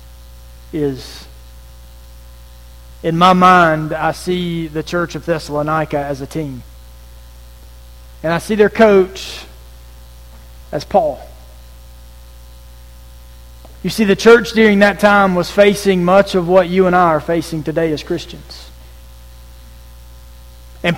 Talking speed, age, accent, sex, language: 115 wpm, 40-59, American, male, English